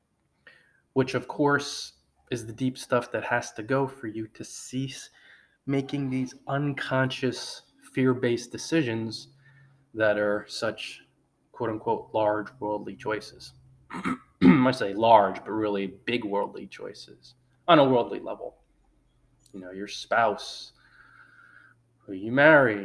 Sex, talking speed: male, 120 wpm